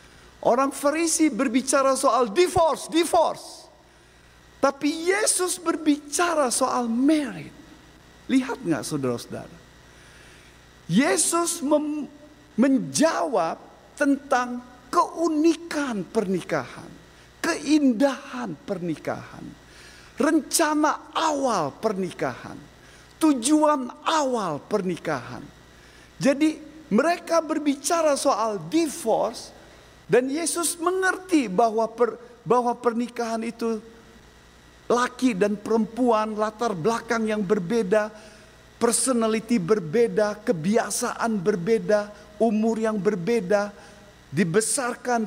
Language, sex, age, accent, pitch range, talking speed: Indonesian, male, 50-69, native, 210-290 Hz, 75 wpm